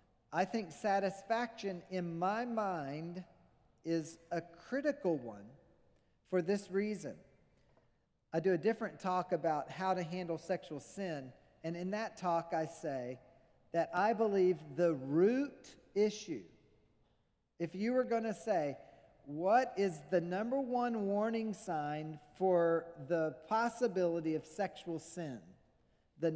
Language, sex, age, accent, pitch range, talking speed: English, male, 40-59, American, 155-205 Hz, 125 wpm